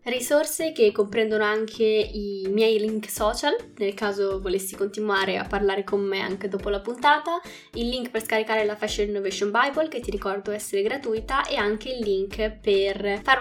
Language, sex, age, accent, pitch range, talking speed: Italian, female, 10-29, native, 200-230 Hz, 175 wpm